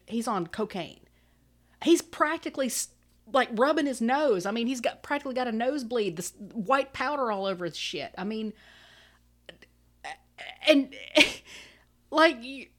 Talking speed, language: 130 wpm, English